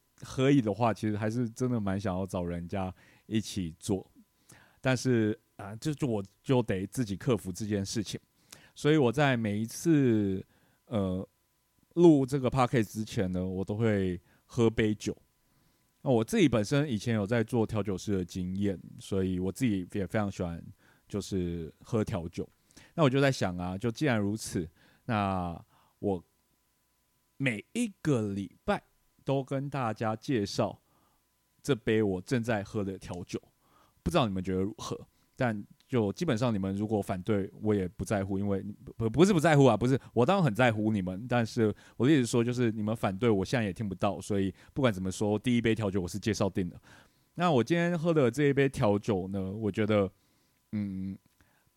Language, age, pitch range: Chinese, 30-49, 95-125 Hz